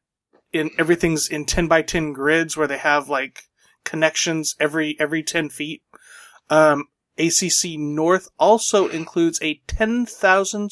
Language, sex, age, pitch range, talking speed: English, male, 30-49, 150-185 Hz, 130 wpm